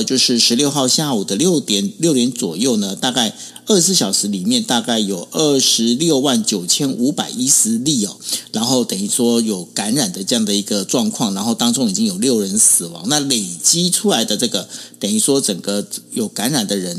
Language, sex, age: Chinese, male, 50-69